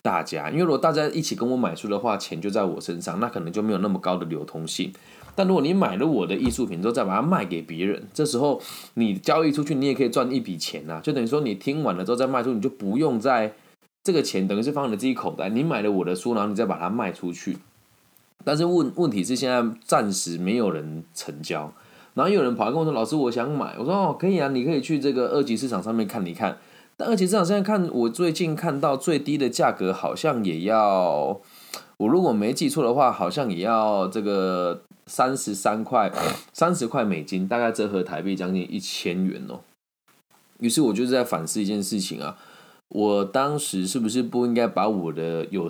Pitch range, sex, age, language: 95-145 Hz, male, 20-39, Chinese